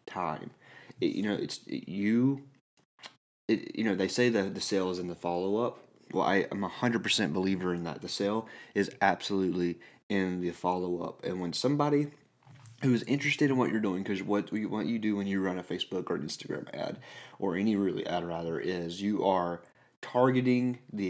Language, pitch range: English, 90-115 Hz